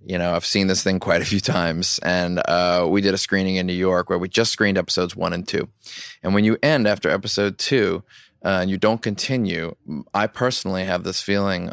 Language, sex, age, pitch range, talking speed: English, male, 20-39, 95-105 Hz, 225 wpm